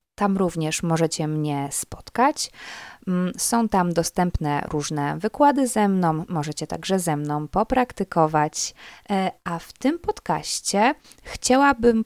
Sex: female